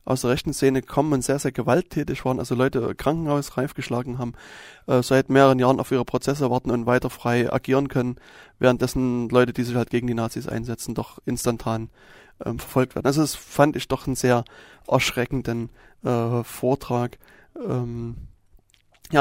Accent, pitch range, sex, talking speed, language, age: German, 120-135 Hz, male, 170 wpm, German, 20-39